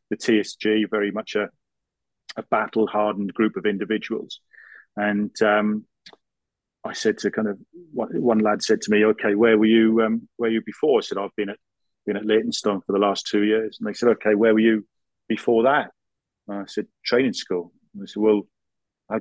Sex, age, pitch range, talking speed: male, 40-59, 100-115 Hz, 200 wpm